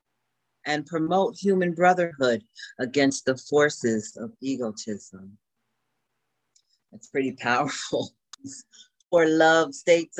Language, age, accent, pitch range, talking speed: English, 40-59, American, 125-170 Hz, 90 wpm